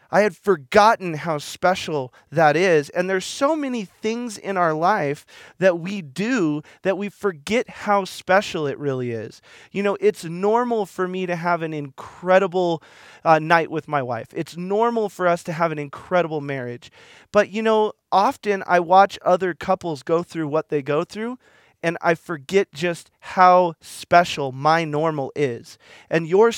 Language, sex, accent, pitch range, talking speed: English, male, American, 155-200 Hz, 170 wpm